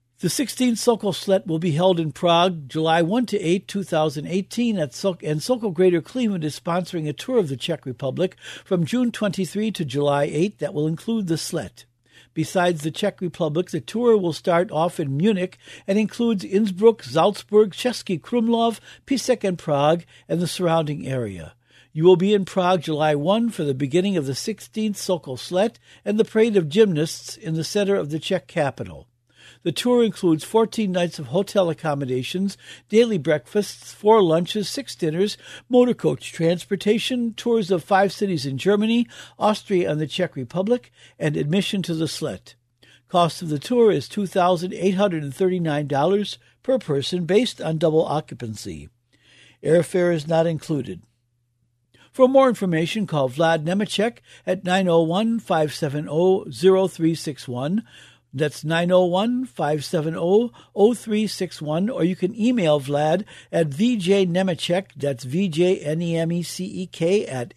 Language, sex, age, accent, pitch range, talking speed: English, male, 60-79, American, 155-205 Hz, 150 wpm